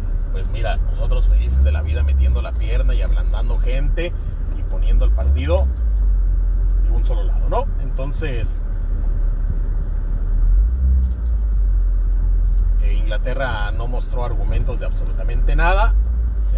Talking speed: 110 wpm